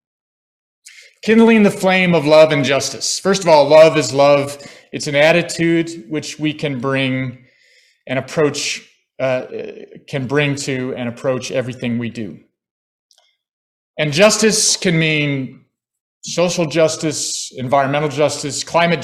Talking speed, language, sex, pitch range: 125 wpm, English, male, 135-170 Hz